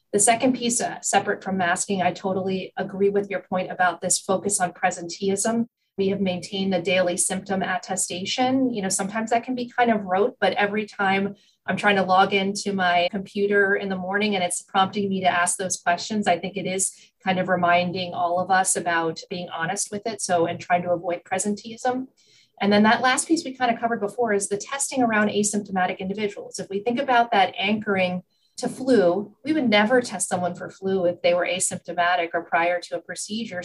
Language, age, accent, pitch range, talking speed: English, 30-49, American, 180-210 Hz, 205 wpm